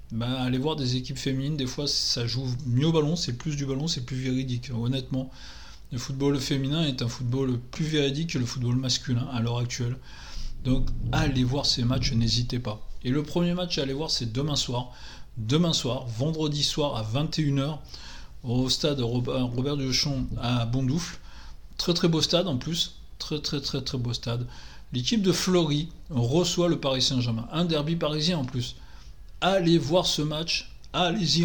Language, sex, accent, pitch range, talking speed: French, male, French, 125-155 Hz, 180 wpm